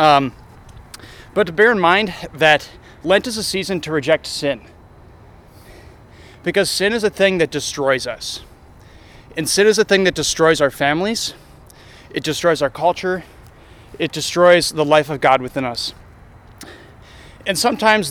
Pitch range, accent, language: 130-185 Hz, American, English